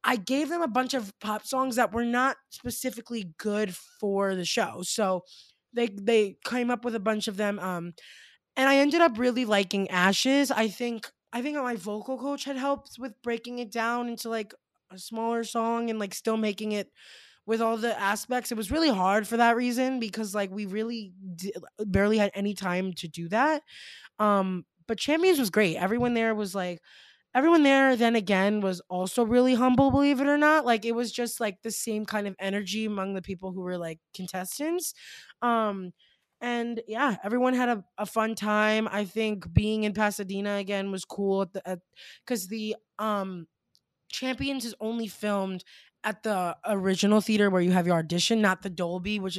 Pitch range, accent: 195-240 Hz, American